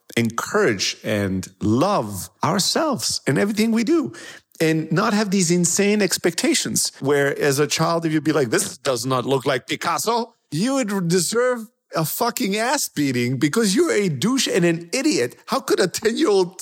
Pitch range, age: 120-180 Hz, 50-69